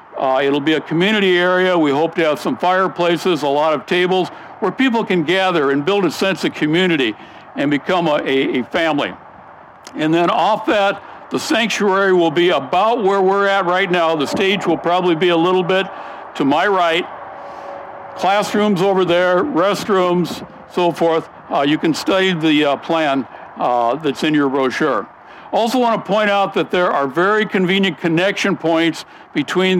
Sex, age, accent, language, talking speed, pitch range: male, 60-79, American, English, 175 wpm, 160-200 Hz